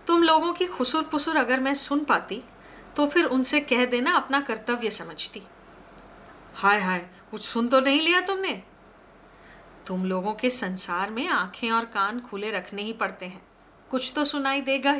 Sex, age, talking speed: female, 30-49, 170 wpm